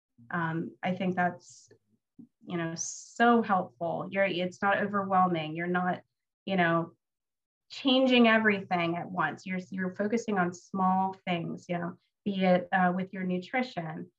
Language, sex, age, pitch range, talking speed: English, female, 20-39, 175-205 Hz, 145 wpm